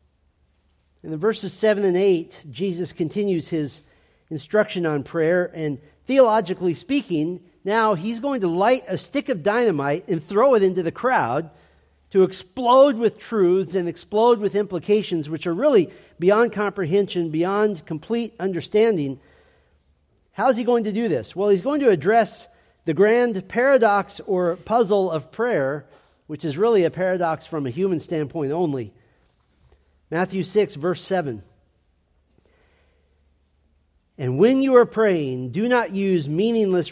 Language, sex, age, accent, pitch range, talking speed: English, male, 50-69, American, 150-215 Hz, 145 wpm